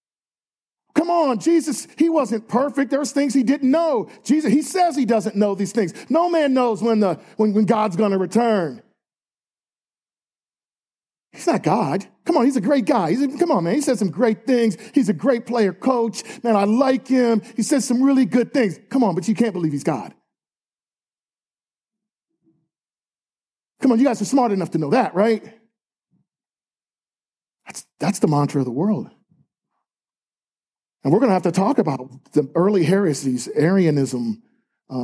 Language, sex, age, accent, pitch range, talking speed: English, male, 40-59, American, 160-235 Hz, 180 wpm